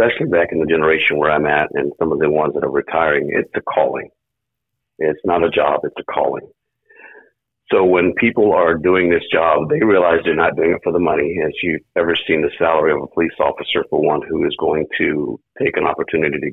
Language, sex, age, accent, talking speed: English, male, 50-69, American, 225 wpm